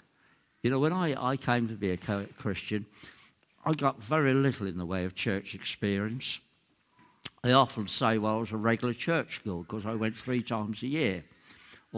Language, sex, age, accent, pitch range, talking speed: English, male, 60-79, British, 105-140 Hz, 190 wpm